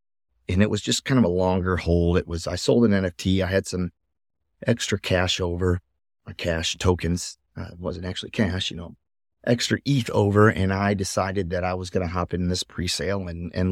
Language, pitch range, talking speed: English, 90-100 Hz, 210 wpm